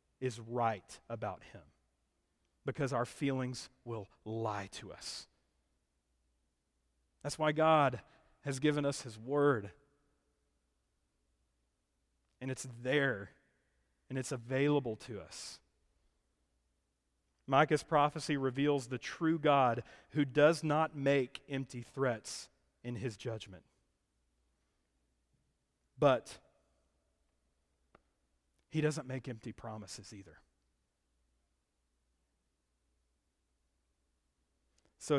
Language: English